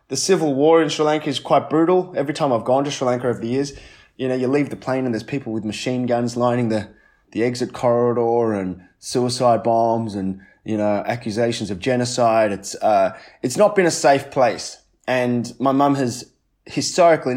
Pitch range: 110-140 Hz